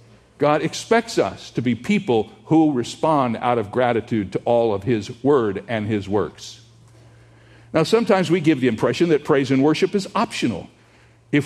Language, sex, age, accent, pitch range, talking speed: English, male, 50-69, American, 120-205 Hz, 170 wpm